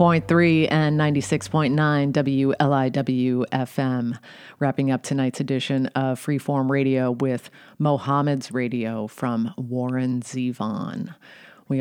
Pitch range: 125-150 Hz